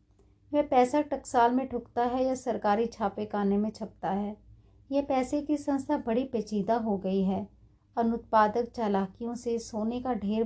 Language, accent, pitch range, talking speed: Hindi, native, 185-250 Hz, 155 wpm